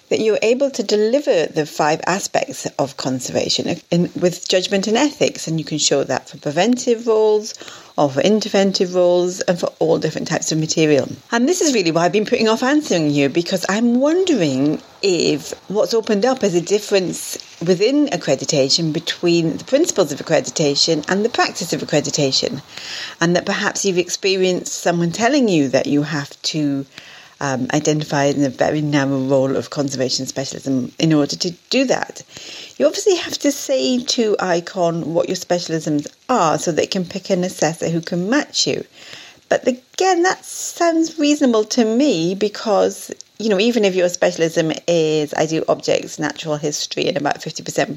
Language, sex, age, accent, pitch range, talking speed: English, female, 40-59, British, 150-220 Hz, 170 wpm